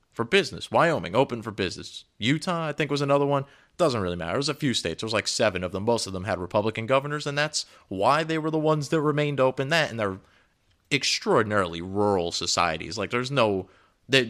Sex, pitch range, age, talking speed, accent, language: male, 95-130 Hz, 30-49, 220 wpm, American, English